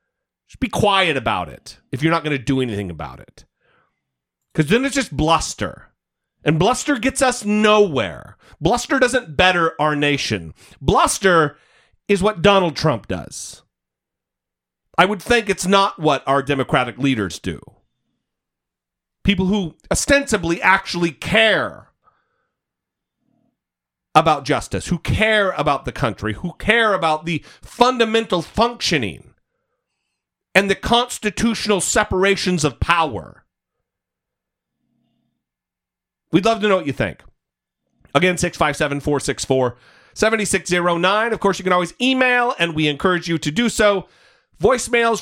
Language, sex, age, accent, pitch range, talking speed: English, male, 40-59, American, 145-215 Hz, 135 wpm